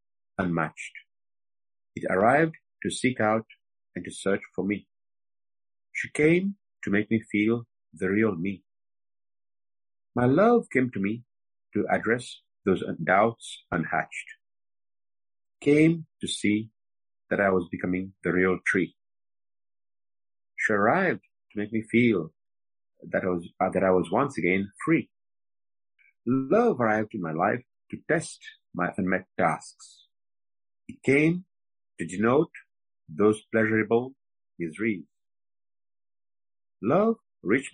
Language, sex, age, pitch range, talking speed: English, male, 50-69, 100-115 Hz, 120 wpm